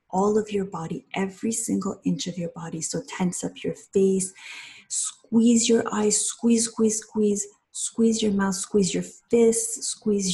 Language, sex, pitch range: English, female, 180-220 Hz